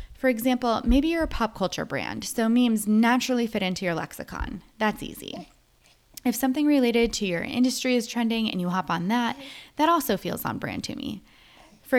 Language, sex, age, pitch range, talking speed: English, female, 20-39, 190-255 Hz, 190 wpm